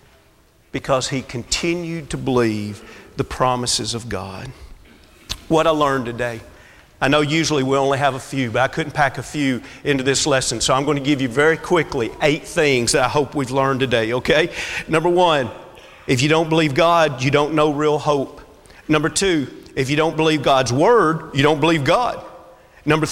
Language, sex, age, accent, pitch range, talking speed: English, male, 40-59, American, 145-200 Hz, 185 wpm